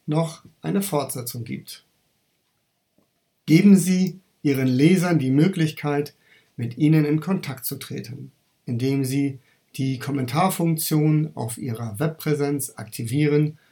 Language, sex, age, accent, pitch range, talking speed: German, male, 50-69, German, 135-170 Hz, 105 wpm